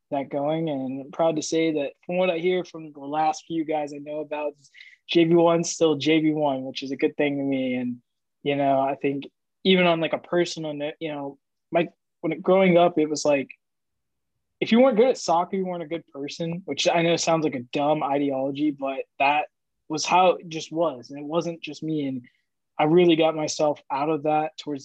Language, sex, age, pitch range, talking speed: English, male, 20-39, 140-160 Hz, 220 wpm